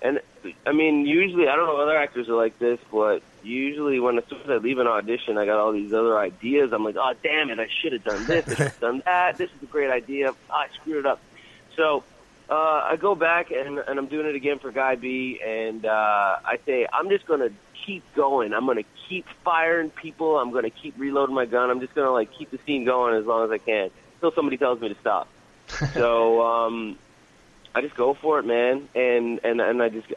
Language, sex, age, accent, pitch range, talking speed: English, male, 30-49, American, 115-160 Hz, 240 wpm